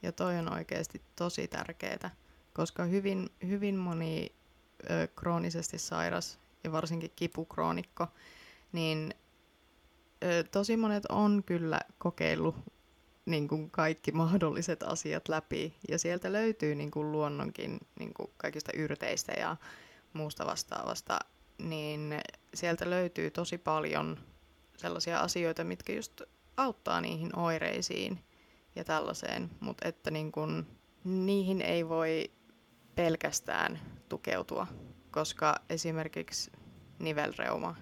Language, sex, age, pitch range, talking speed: Finnish, female, 20-39, 115-170 Hz, 100 wpm